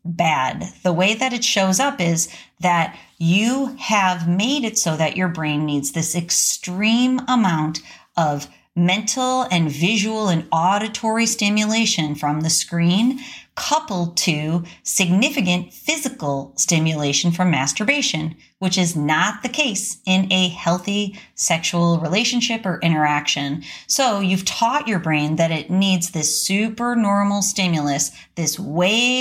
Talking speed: 130 wpm